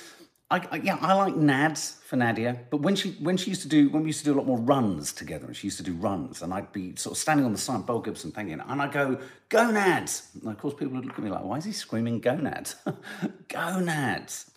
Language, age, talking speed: English, 50-69, 270 wpm